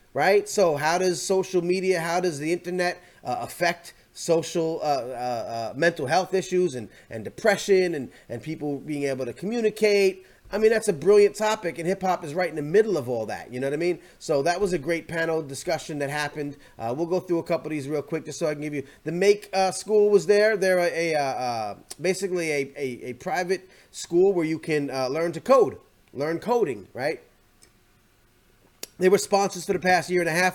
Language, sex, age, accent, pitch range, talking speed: English, male, 30-49, American, 150-195 Hz, 225 wpm